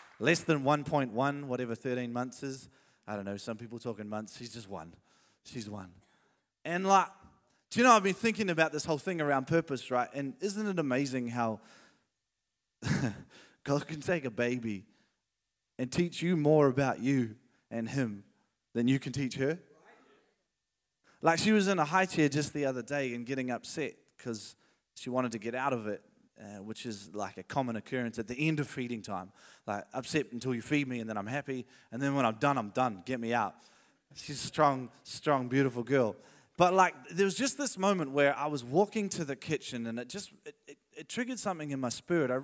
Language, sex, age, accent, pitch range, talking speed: English, male, 20-39, Australian, 120-160 Hz, 205 wpm